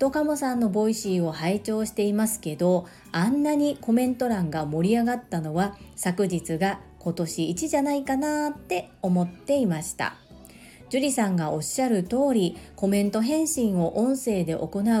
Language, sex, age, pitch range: Japanese, female, 40-59, 180-240 Hz